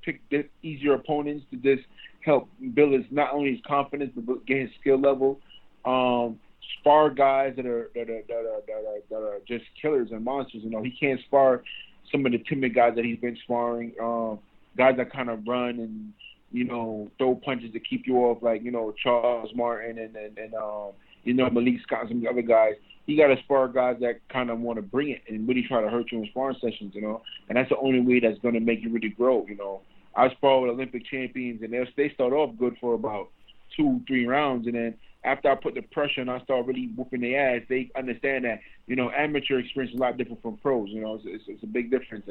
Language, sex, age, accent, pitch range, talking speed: English, male, 30-49, American, 115-135 Hz, 235 wpm